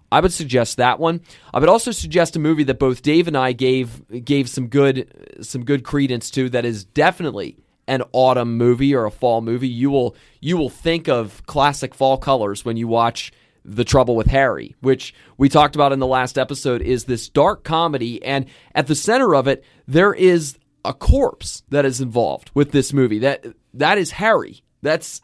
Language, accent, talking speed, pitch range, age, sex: English, American, 195 wpm, 125-150 Hz, 30-49, male